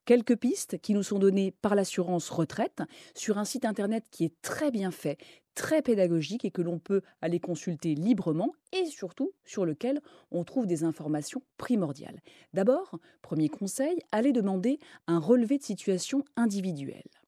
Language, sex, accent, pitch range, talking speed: French, female, French, 170-240 Hz, 160 wpm